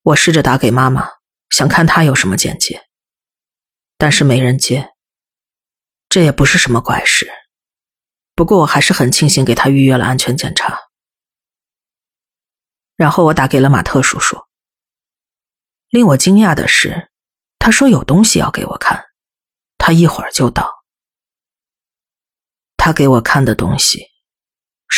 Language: Chinese